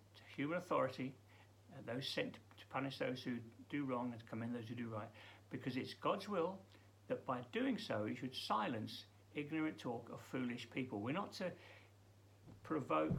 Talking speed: 175 wpm